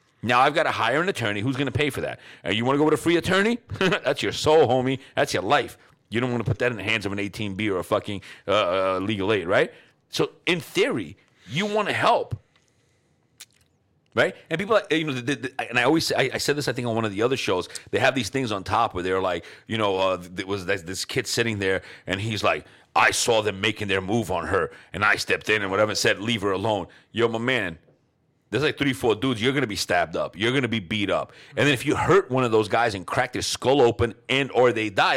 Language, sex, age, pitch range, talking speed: English, male, 40-59, 105-140 Hz, 270 wpm